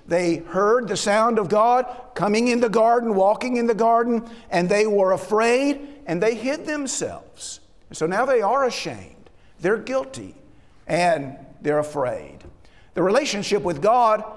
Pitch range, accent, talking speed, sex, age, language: 180-255 Hz, American, 150 wpm, male, 50-69, English